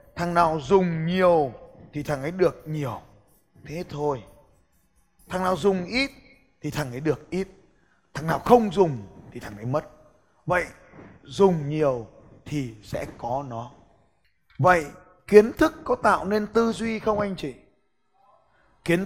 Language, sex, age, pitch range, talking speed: Vietnamese, male, 20-39, 145-200 Hz, 150 wpm